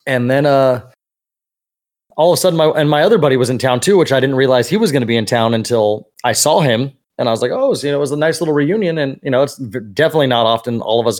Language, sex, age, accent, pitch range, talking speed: English, male, 20-39, American, 115-145 Hz, 295 wpm